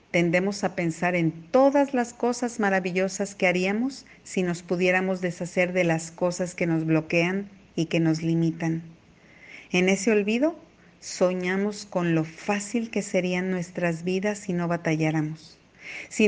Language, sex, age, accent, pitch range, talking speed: Spanish, female, 50-69, Mexican, 170-200 Hz, 145 wpm